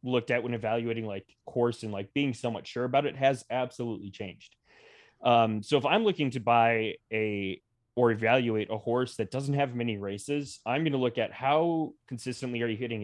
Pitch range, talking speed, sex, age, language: 110-135 Hz, 200 wpm, male, 20-39, English